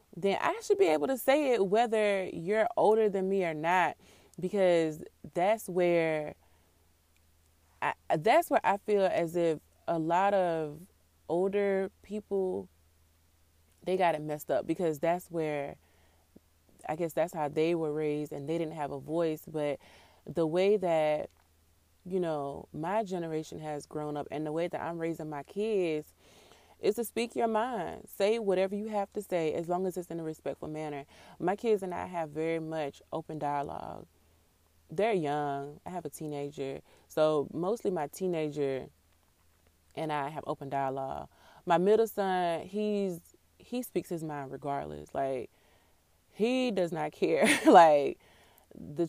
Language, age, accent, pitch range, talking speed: English, 20-39, American, 140-185 Hz, 160 wpm